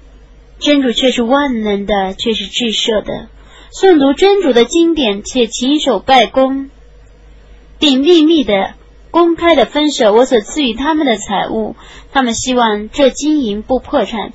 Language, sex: Chinese, female